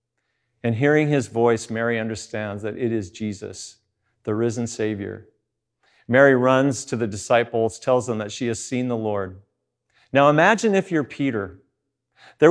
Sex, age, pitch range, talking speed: male, 40-59, 105-130 Hz, 155 wpm